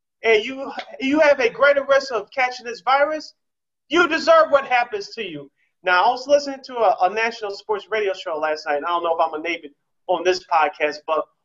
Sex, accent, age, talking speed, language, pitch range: male, American, 30-49, 220 wpm, English, 160-210 Hz